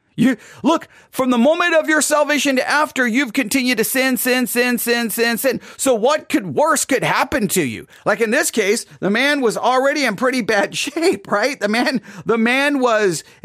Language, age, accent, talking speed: English, 40-59, American, 200 wpm